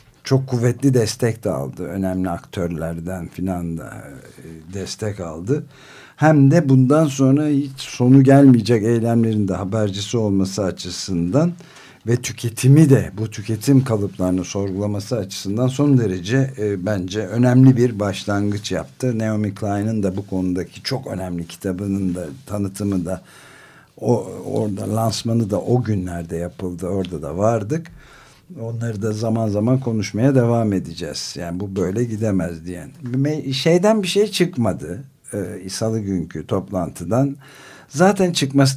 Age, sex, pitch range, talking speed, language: 60-79, male, 95-130 Hz, 120 wpm, Turkish